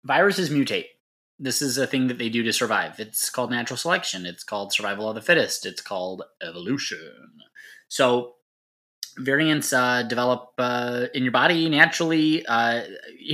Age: 20-39